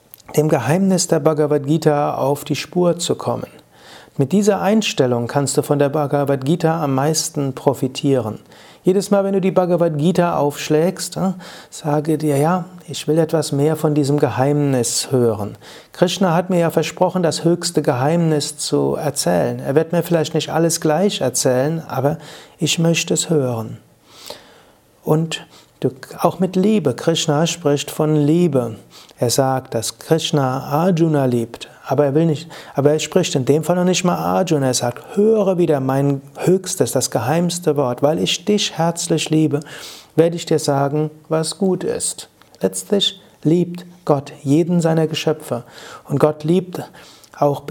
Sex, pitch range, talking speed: male, 145-170 Hz, 150 wpm